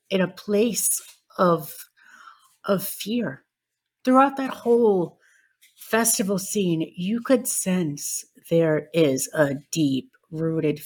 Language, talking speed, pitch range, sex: English, 105 wpm, 175-225 Hz, female